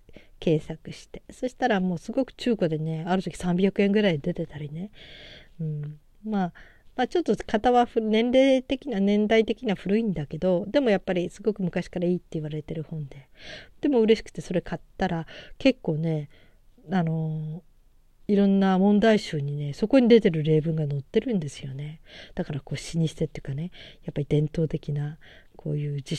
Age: 40-59